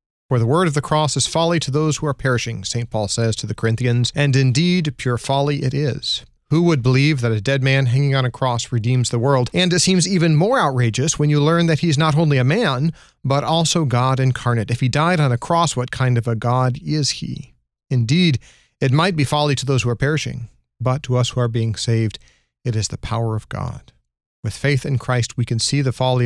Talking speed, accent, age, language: 240 wpm, American, 40-59, English